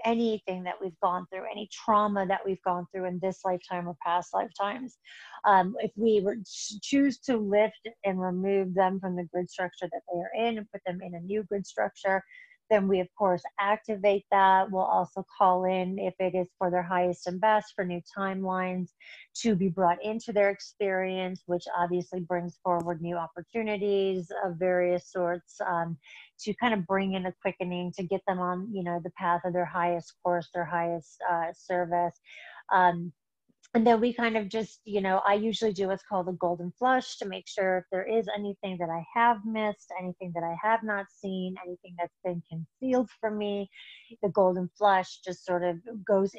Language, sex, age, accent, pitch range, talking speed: English, female, 30-49, American, 180-210 Hz, 195 wpm